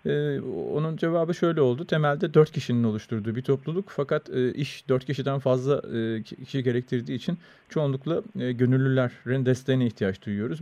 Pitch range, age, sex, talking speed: 120-150 Hz, 40-59, male, 155 wpm